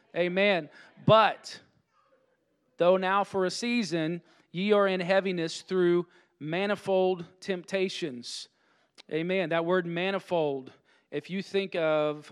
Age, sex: 40-59, male